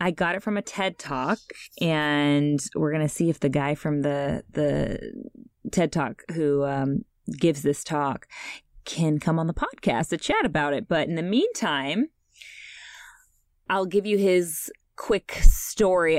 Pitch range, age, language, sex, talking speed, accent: 150-190 Hz, 20-39, English, female, 165 wpm, American